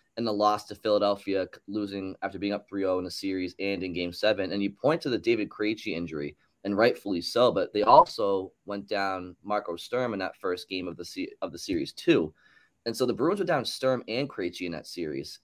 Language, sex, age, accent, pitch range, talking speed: English, male, 20-39, American, 90-110 Hz, 225 wpm